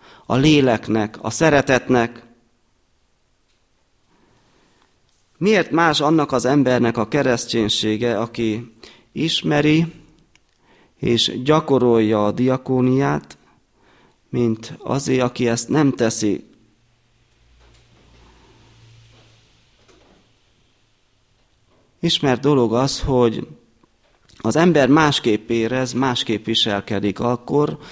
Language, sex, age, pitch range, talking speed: Hungarian, male, 30-49, 110-135 Hz, 75 wpm